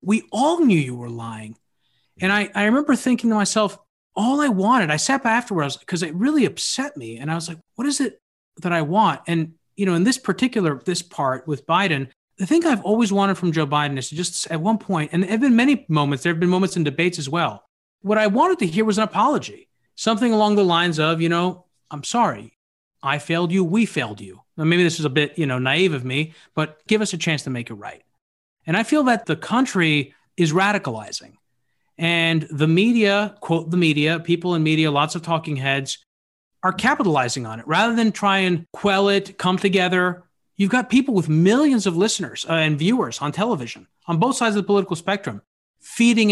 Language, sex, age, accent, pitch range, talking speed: English, male, 30-49, American, 155-210 Hz, 220 wpm